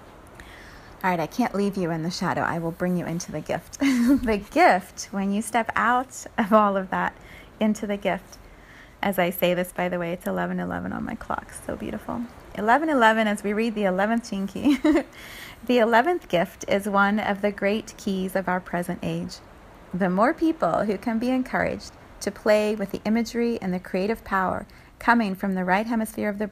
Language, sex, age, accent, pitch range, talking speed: English, female, 30-49, American, 185-230 Hz, 200 wpm